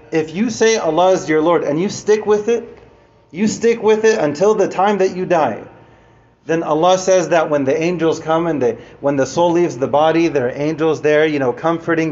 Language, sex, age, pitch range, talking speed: English, male, 30-49, 150-195 Hz, 225 wpm